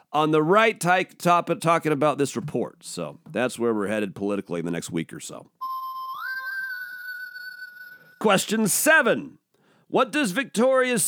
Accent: American